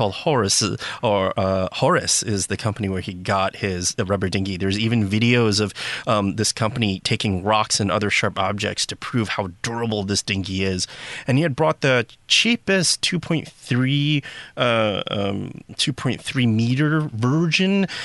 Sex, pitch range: male, 105-140 Hz